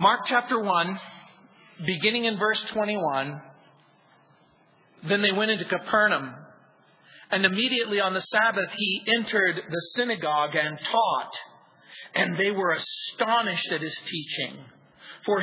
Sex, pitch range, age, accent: male, 170-220 Hz, 40-59, American